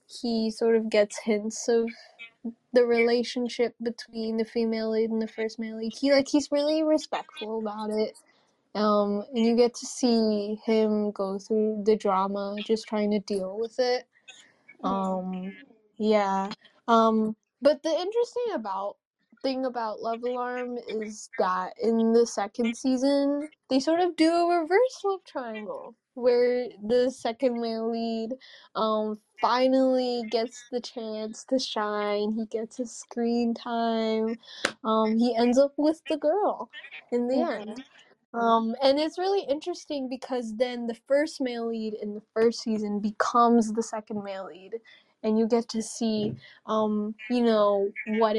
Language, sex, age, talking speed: English, female, 10-29, 150 wpm